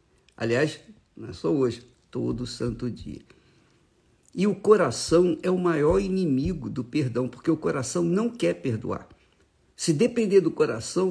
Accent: Brazilian